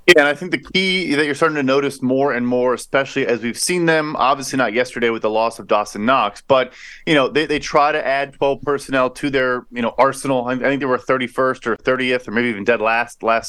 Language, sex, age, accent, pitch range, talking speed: English, male, 30-49, American, 125-150 Hz, 250 wpm